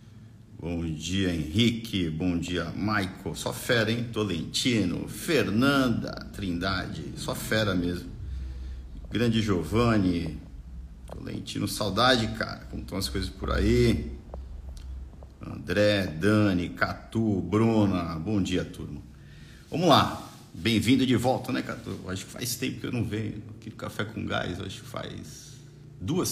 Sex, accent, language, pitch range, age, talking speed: male, Brazilian, Portuguese, 90-115 Hz, 50-69, 130 wpm